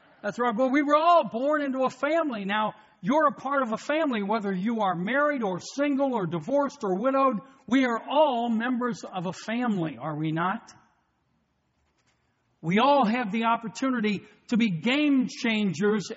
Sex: male